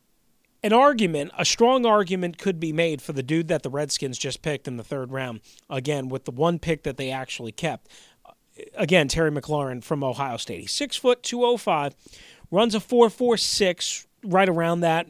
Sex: male